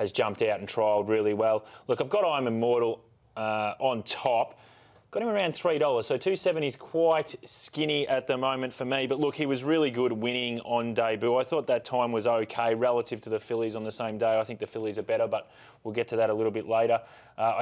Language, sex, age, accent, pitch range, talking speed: English, male, 20-39, Australian, 115-135 Hz, 235 wpm